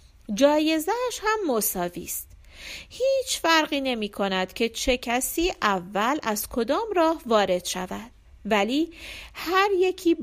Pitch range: 205-335 Hz